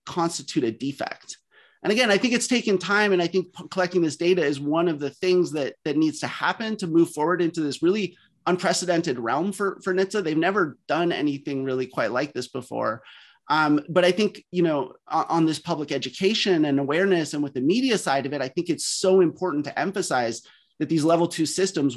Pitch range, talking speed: 150-190 Hz, 215 wpm